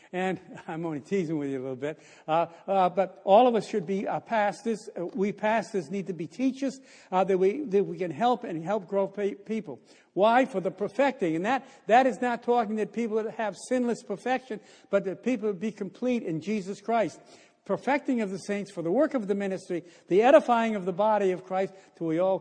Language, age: English, 60-79